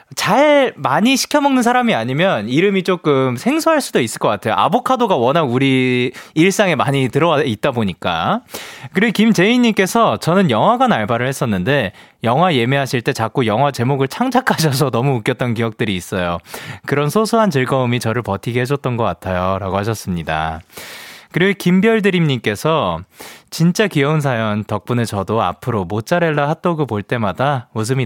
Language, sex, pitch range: Korean, male, 110-170 Hz